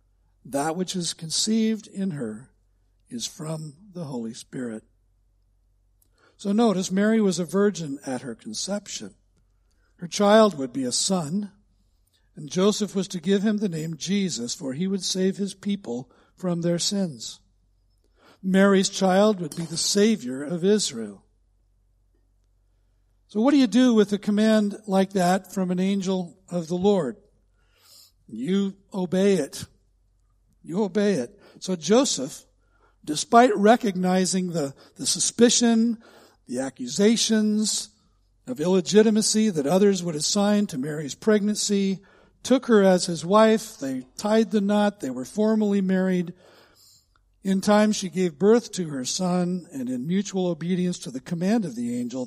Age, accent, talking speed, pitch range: 60-79, American, 140 wpm, 130-210 Hz